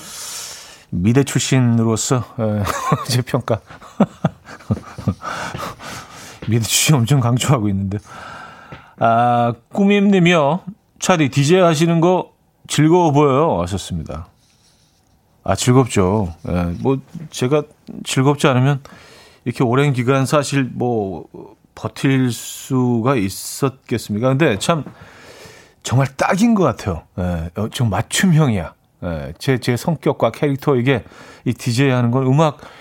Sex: male